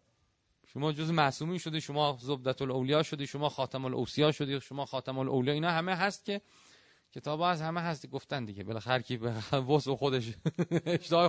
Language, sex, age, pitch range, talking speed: Persian, male, 30-49, 140-195 Hz, 165 wpm